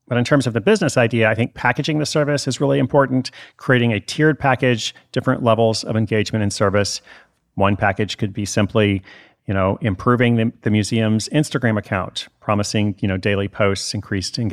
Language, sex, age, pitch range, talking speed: English, male, 40-59, 100-120 Hz, 180 wpm